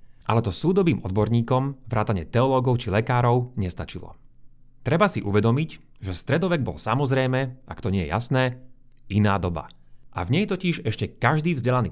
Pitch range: 105-140 Hz